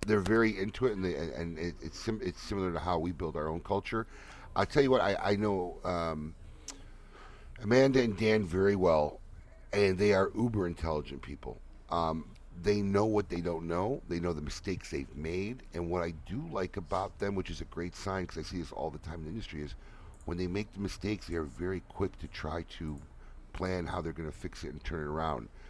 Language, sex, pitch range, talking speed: English, male, 80-100 Hz, 225 wpm